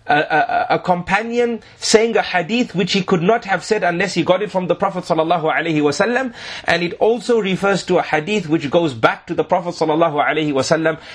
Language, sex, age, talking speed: English, male, 30-49, 205 wpm